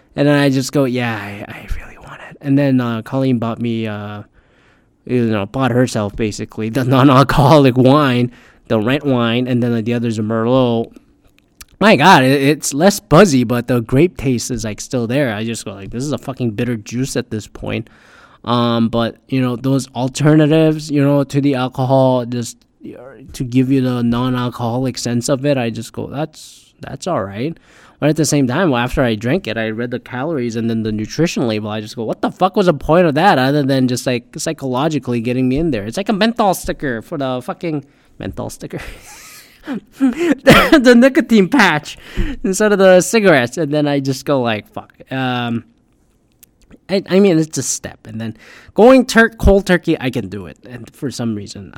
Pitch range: 120-150 Hz